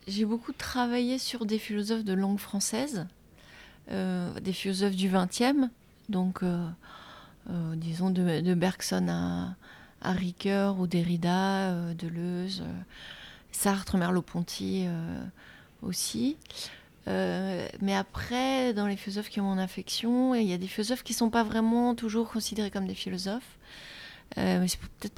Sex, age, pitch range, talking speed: female, 30-49, 180-220 Hz, 150 wpm